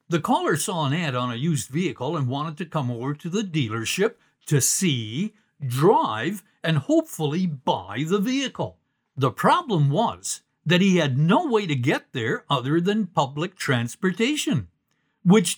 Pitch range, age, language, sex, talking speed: 140-205 Hz, 60-79, English, male, 160 wpm